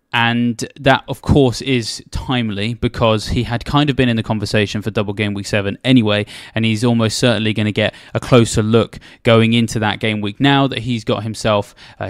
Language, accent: English, British